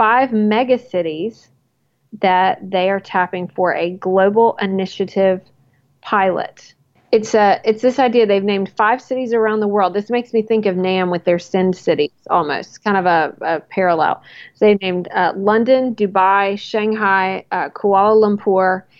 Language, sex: English, female